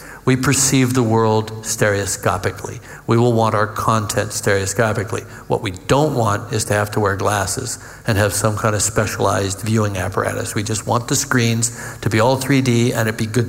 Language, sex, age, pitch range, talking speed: English, male, 60-79, 110-125 Hz, 185 wpm